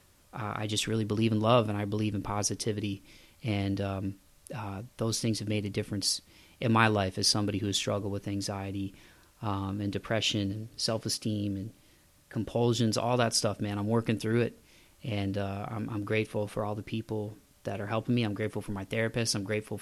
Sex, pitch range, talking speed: male, 105-120 Hz, 195 wpm